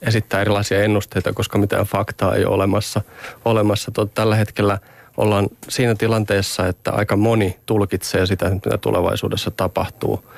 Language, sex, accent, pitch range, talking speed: Finnish, male, native, 100-115 Hz, 135 wpm